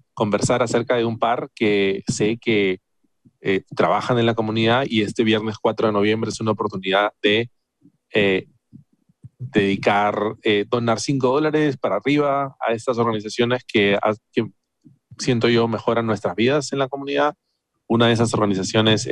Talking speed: 155 wpm